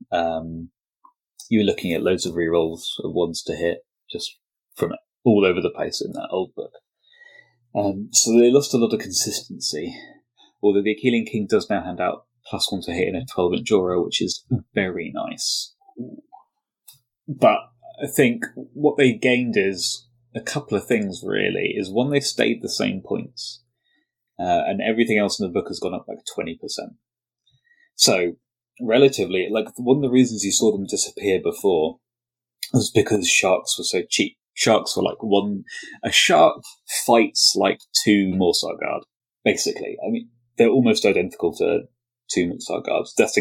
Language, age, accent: English, 20-39, British